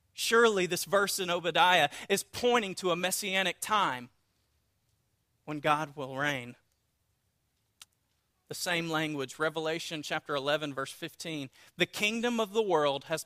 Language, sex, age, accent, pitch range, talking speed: English, male, 40-59, American, 145-185 Hz, 130 wpm